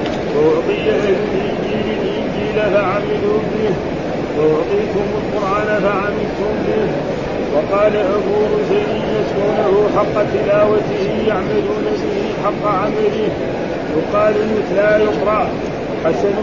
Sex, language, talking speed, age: male, Arabic, 85 wpm, 40-59